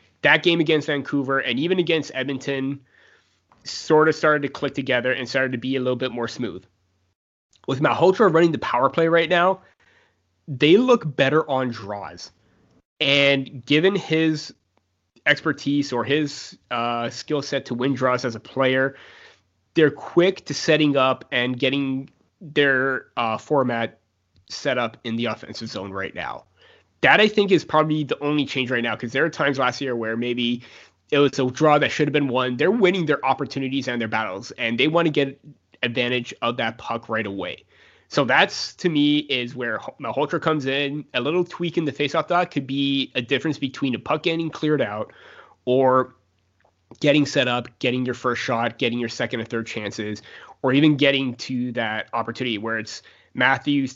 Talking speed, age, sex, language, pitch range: 180 wpm, 20-39, male, English, 120-150 Hz